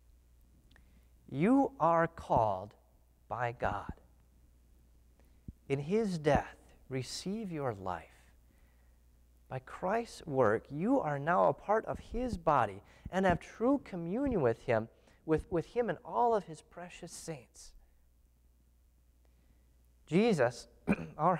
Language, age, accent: English, 30-49, American